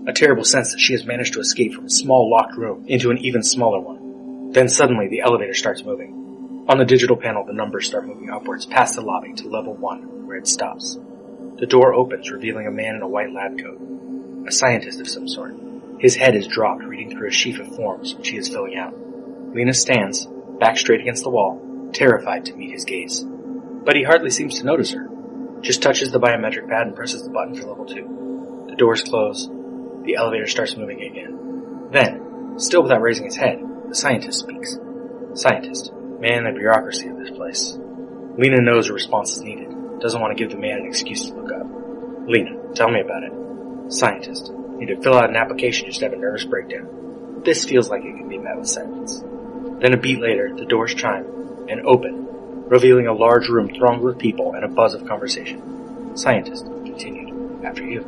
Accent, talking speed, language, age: American, 210 wpm, English, 30-49